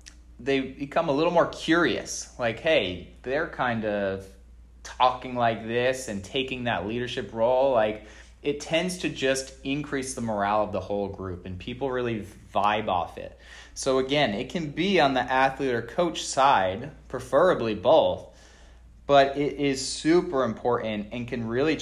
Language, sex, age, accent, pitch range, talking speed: English, male, 20-39, American, 105-135 Hz, 160 wpm